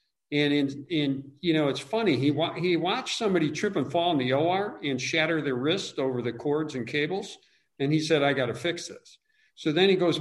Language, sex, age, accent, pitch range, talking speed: English, male, 50-69, American, 130-165 Hz, 230 wpm